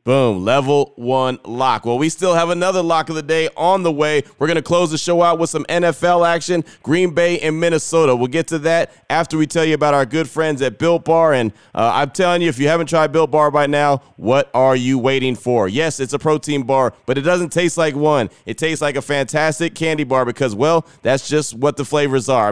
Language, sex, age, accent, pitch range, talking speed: English, male, 30-49, American, 130-155 Hz, 240 wpm